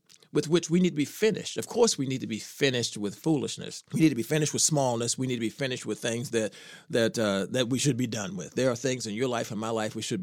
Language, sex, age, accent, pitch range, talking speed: English, male, 40-59, American, 115-150 Hz, 295 wpm